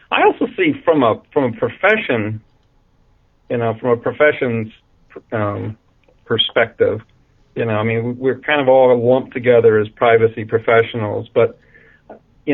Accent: American